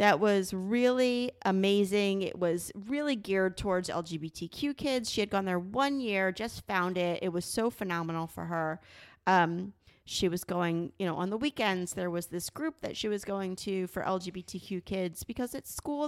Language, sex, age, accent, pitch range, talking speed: English, female, 30-49, American, 180-230 Hz, 185 wpm